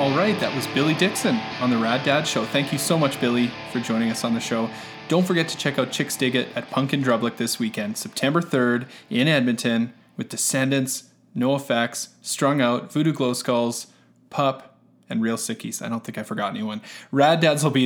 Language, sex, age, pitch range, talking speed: English, male, 20-39, 115-140 Hz, 210 wpm